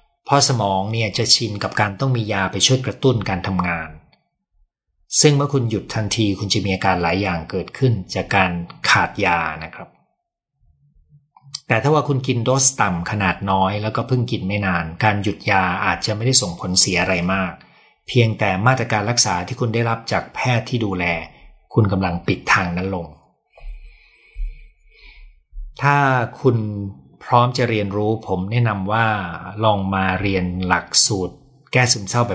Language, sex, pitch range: Thai, male, 95-120 Hz